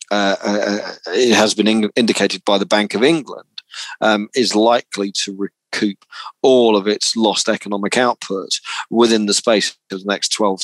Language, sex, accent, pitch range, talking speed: English, male, British, 100-115 Hz, 170 wpm